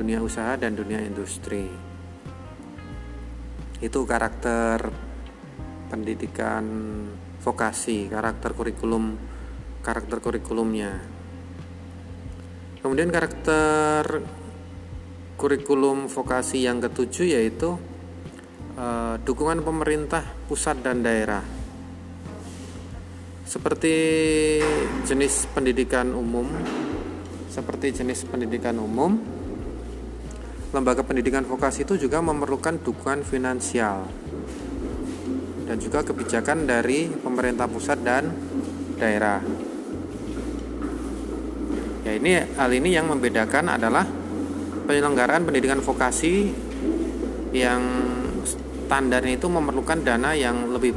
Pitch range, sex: 90-140 Hz, male